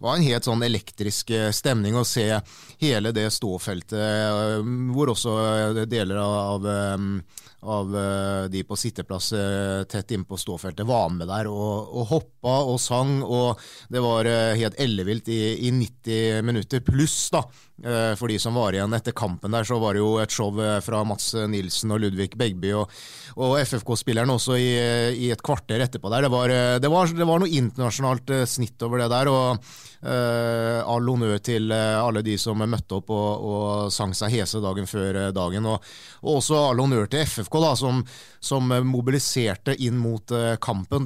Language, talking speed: English, 170 wpm